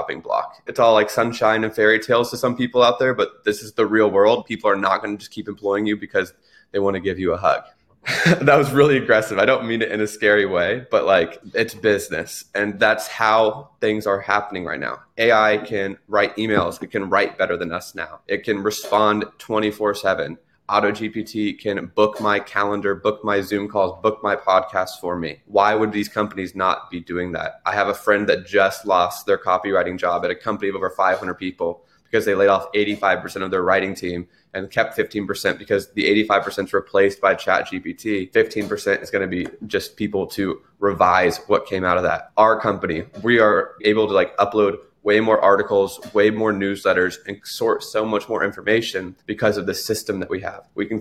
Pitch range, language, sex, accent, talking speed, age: 100-110 Hz, English, male, American, 210 wpm, 20-39